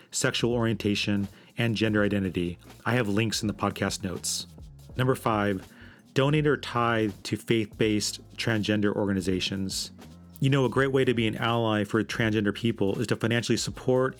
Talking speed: 155 wpm